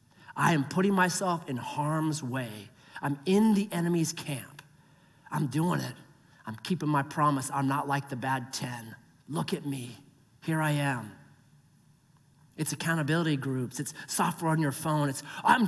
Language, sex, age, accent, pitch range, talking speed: English, male, 40-59, American, 145-230 Hz, 155 wpm